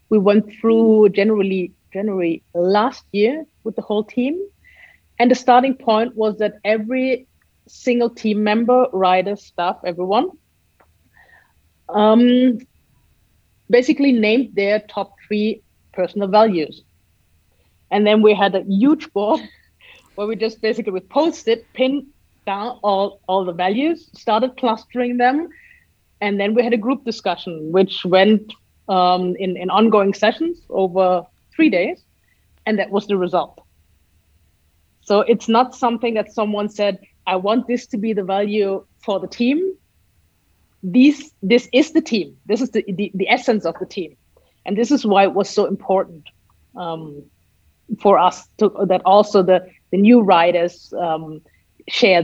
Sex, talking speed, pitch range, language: female, 145 wpm, 185-240 Hz, English